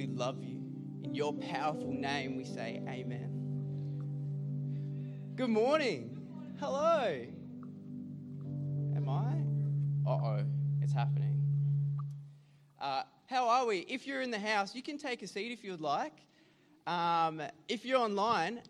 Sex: male